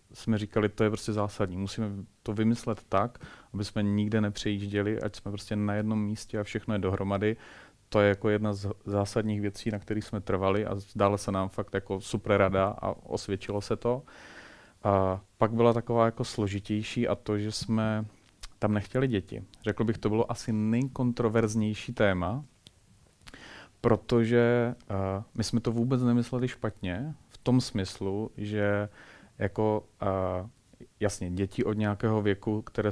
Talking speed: 155 wpm